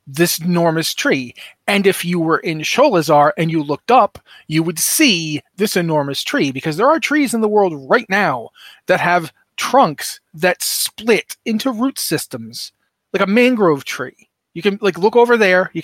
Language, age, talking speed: English, 30-49, 180 wpm